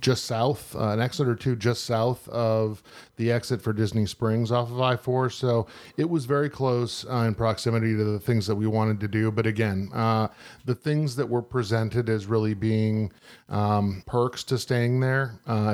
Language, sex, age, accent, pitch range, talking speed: English, male, 40-59, American, 110-130 Hz, 195 wpm